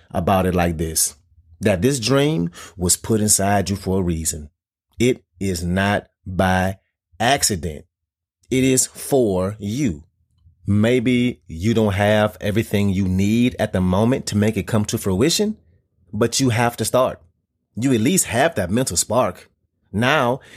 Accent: American